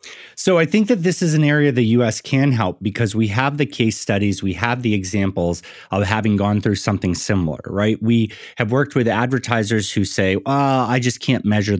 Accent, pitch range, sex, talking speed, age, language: American, 95-120 Hz, male, 210 wpm, 30-49, Italian